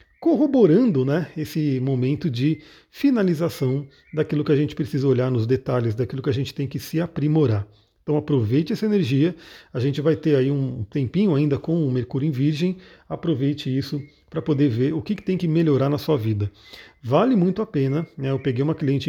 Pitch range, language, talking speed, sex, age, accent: 130-165 Hz, Portuguese, 195 wpm, male, 40-59, Brazilian